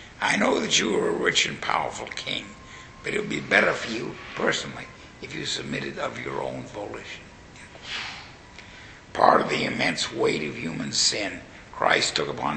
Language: English